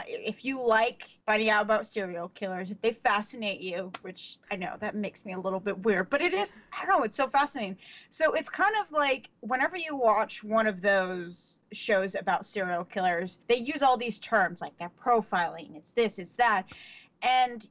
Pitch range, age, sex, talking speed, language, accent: 200-255 Hz, 30-49, female, 200 wpm, English, American